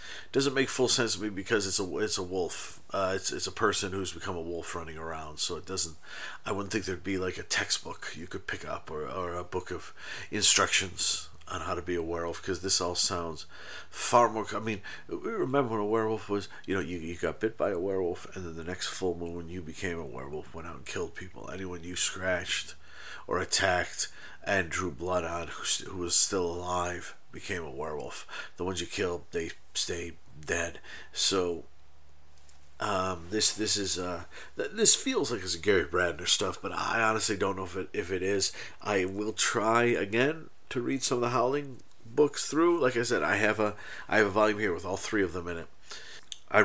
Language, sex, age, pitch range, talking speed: English, male, 40-59, 85-105 Hz, 215 wpm